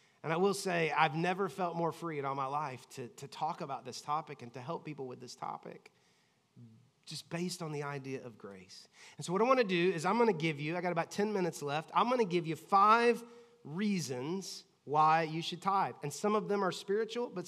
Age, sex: 30-49, male